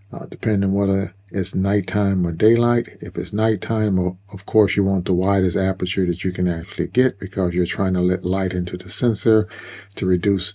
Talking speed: 190 wpm